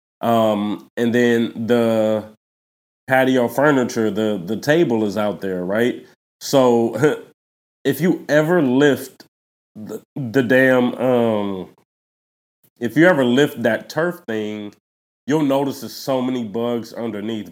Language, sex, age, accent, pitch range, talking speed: English, male, 30-49, American, 105-125 Hz, 125 wpm